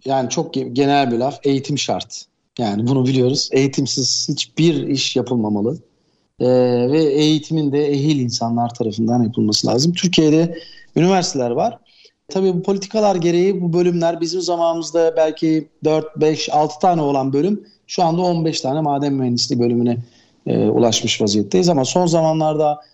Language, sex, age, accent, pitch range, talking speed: Turkish, male, 40-59, native, 140-185 Hz, 140 wpm